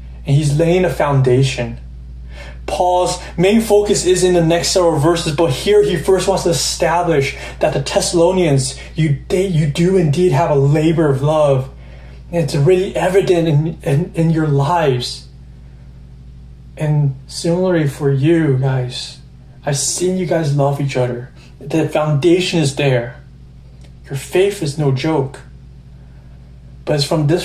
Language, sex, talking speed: English, male, 145 wpm